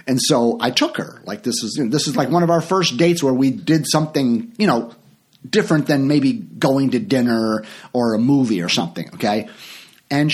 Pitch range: 125-180 Hz